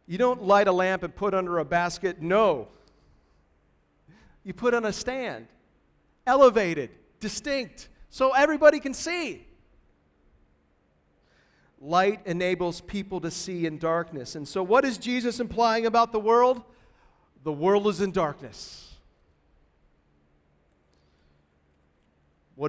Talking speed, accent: 115 wpm, American